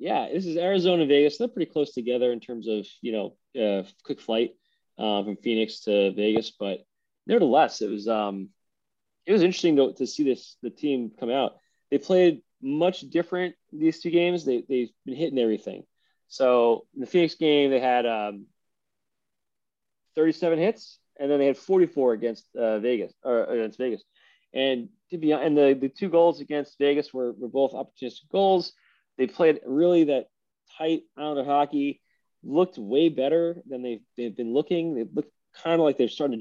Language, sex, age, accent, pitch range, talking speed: English, male, 20-39, American, 120-160 Hz, 180 wpm